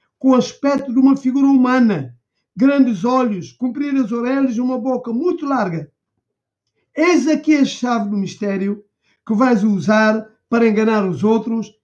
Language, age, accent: Portuguese, 50-69, Brazilian